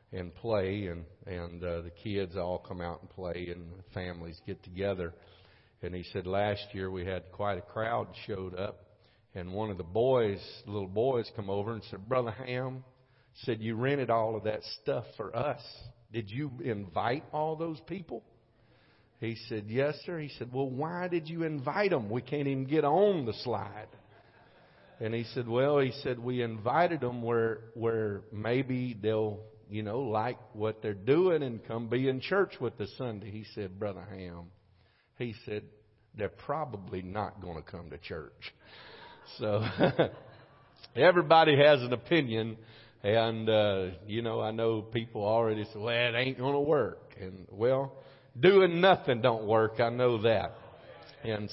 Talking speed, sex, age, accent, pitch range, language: 170 wpm, male, 50-69, American, 100-125 Hz, English